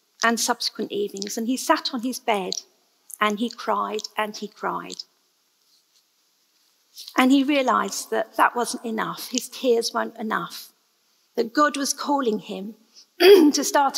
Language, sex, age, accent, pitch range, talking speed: English, female, 50-69, British, 225-270 Hz, 140 wpm